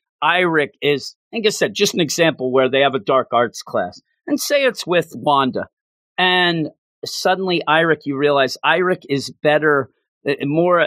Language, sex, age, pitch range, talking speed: English, male, 40-59, 135-175 Hz, 160 wpm